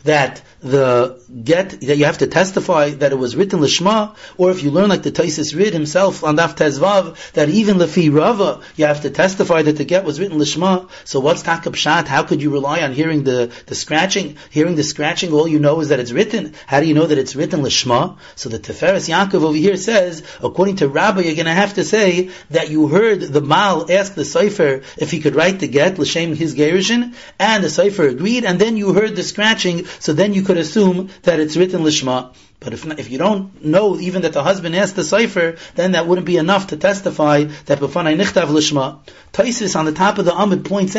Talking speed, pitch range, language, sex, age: 225 wpm, 150-195 Hz, English, male, 30-49